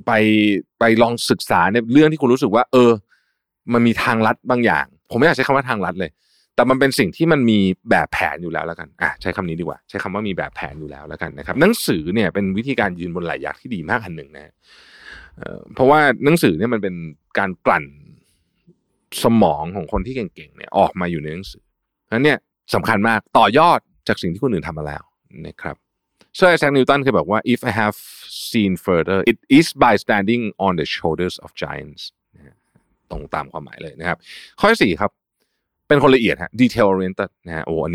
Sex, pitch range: male, 85-125 Hz